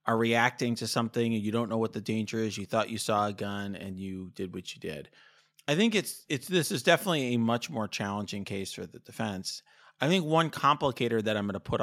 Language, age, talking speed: English, 30-49, 245 wpm